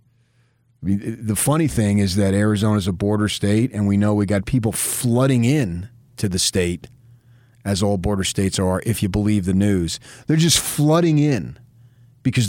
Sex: male